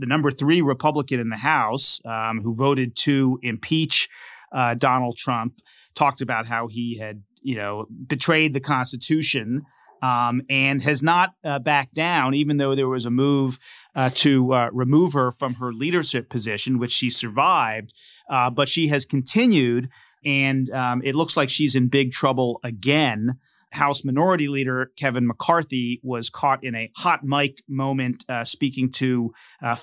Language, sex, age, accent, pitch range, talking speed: English, male, 30-49, American, 120-140 Hz, 165 wpm